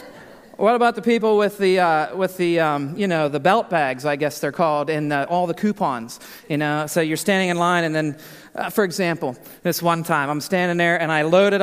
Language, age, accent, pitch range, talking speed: English, 40-59, American, 170-210 Hz, 230 wpm